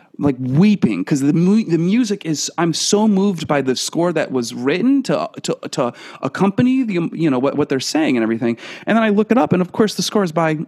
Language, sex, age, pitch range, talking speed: English, male, 30-49, 135-185 Hz, 240 wpm